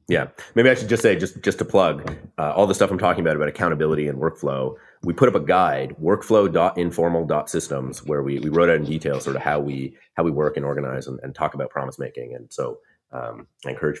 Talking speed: 230 wpm